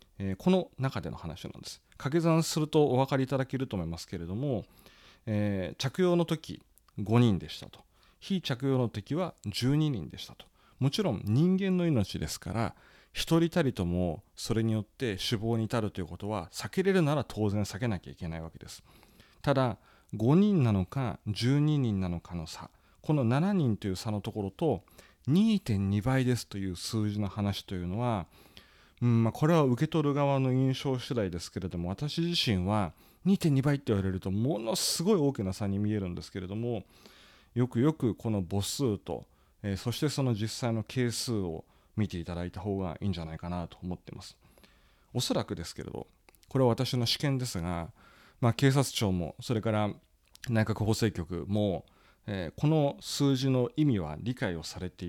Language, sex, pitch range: Japanese, male, 95-135 Hz